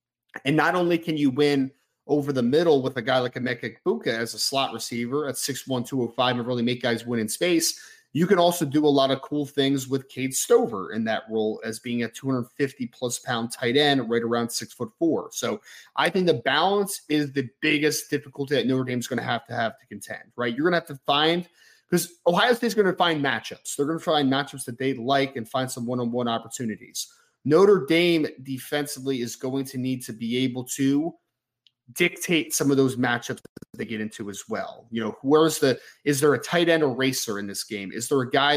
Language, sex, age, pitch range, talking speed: English, male, 30-49, 120-145 Hz, 220 wpm